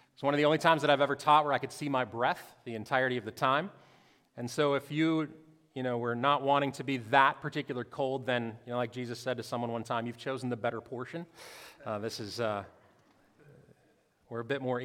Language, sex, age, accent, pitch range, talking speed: English, male, 30-49, American, 125-170 Hz, 235 wpm